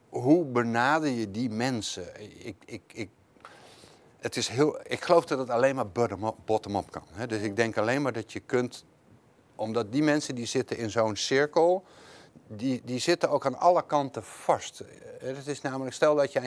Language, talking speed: Dutch, 180 wpm